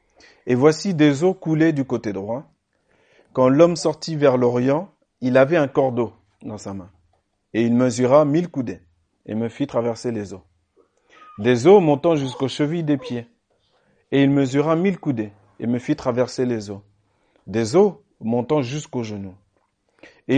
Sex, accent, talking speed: male, French, 160 wpm